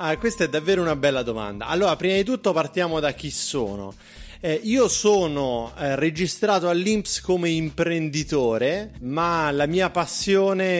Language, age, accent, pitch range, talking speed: Italian, 30-49, native, 145-185 Hz, 150 wpm